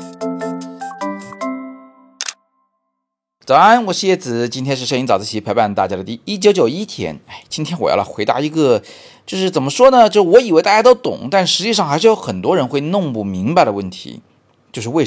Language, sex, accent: Chinese, male, native